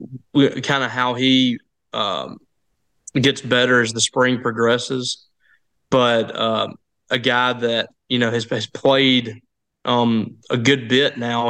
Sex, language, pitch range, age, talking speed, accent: male, English, 120-135 Hz, 20-39, 135 wpm, American